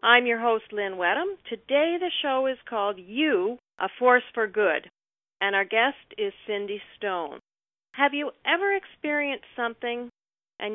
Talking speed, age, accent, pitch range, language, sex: 150 wpm, 50-69, American, 200-260 Hz, English, female